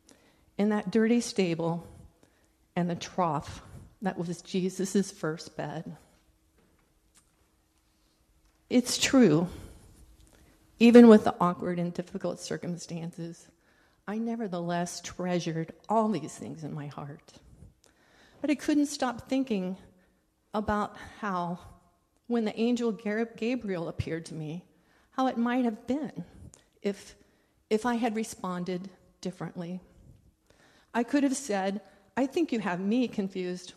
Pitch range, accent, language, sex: 170-225 Hz, American, English, female